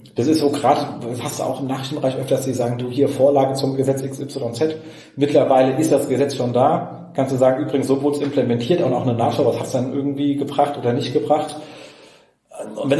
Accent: German